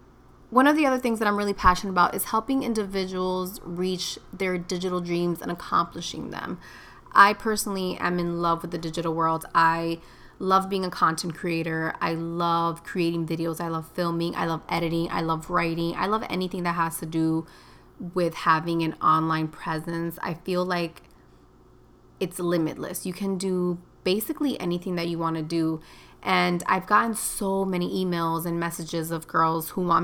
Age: 20-39